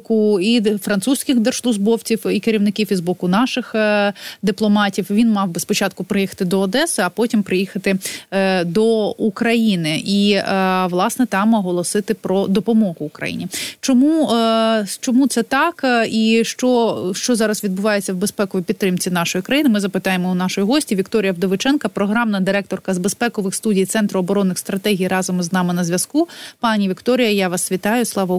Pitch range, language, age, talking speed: 190-230 Hz, Ukrainian, 20-39, 145 wpm